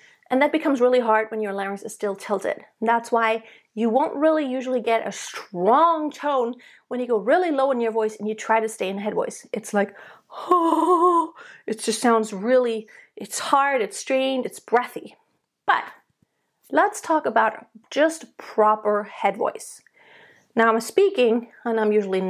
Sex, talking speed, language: female, 170 wpm, English